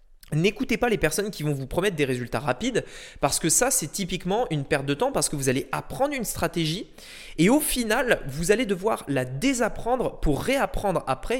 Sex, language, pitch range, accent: male, French, 135-180 Hz, French